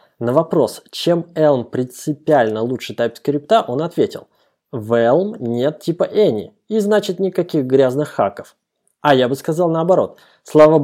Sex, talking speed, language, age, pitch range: male, 140 wpm, Russian, 20-39, 125-170 Hz